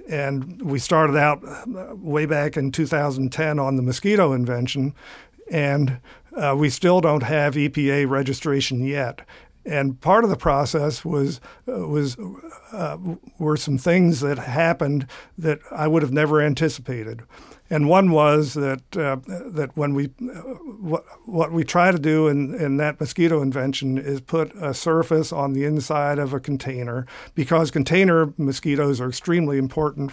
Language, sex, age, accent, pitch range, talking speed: English, male, 50-69, American, 135-155 Hz, 155 wpm